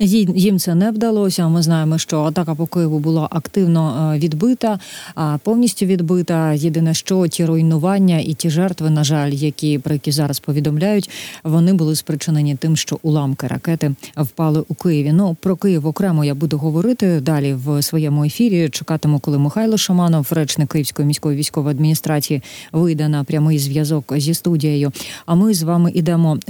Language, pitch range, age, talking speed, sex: Ukrainian, 150-180 Hz, 30-49, 160 wpm, female